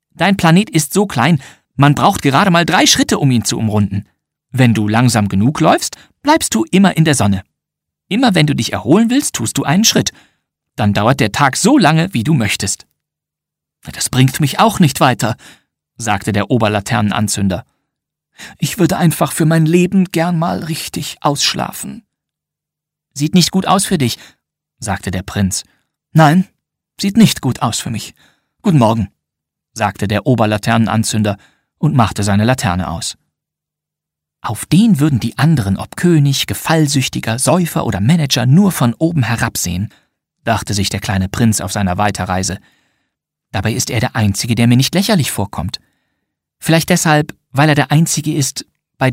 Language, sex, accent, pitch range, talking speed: German, male, German, 110-160 Hz, 160 wpm